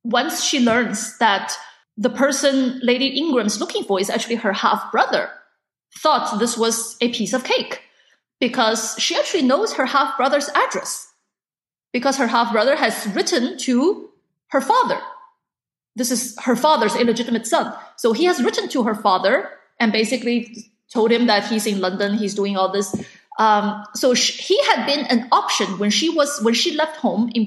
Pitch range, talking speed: 220-280 Hz, 160 wpm